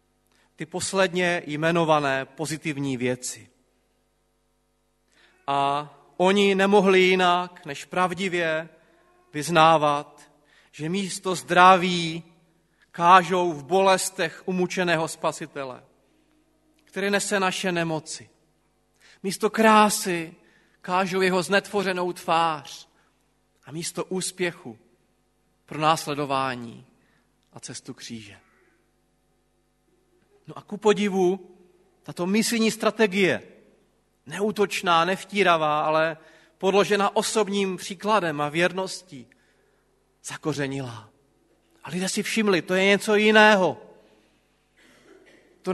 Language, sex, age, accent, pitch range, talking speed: Czech, male, 30-49, native, 145-185 Hz, 85 wpm